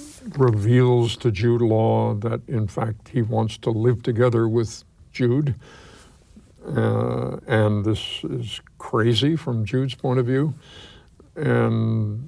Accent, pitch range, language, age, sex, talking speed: American, 105-125 Hz, English, 60-79, male, 120 wpm